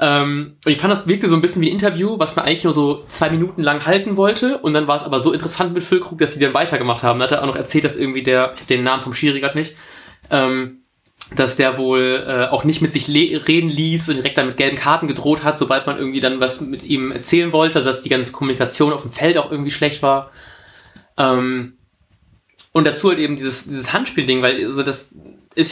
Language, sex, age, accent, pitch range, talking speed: German, male, 20-39, German, 135-170 Hz, 225 wpm